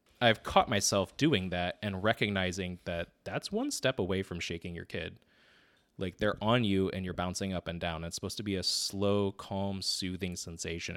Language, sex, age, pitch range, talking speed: English, male, 20-39, 85-100 Hz, 190 wpm